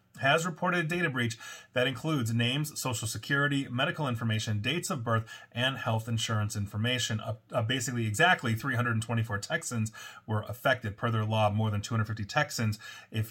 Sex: male